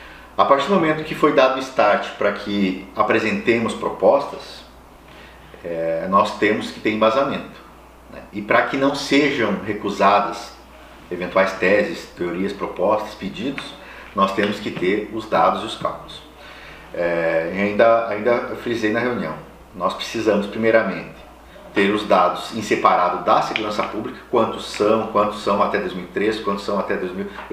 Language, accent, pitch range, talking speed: Portuguese, Brazilian, 100-145 Hz, 150 wpm